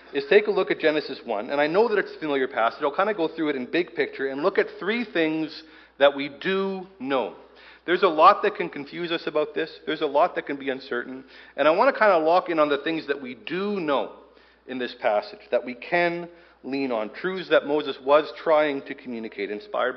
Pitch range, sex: 140-195 Hz, male